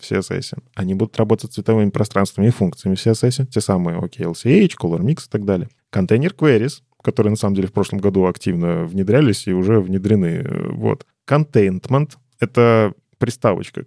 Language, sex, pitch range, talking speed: Russian, male, 100-125 Hz, 160 wpm